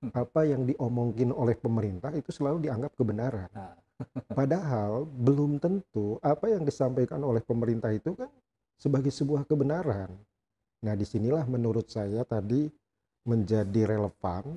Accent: native